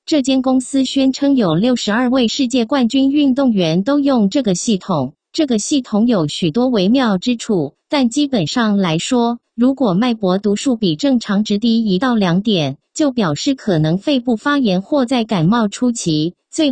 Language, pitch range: English, 190-270 Hz